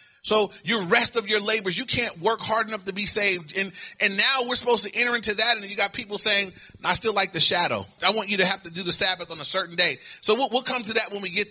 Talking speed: 285 wpm